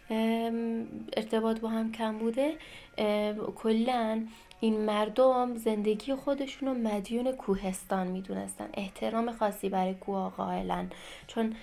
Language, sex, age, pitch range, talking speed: Persian, female, 20-39, 195-250 Hz, 115 wpm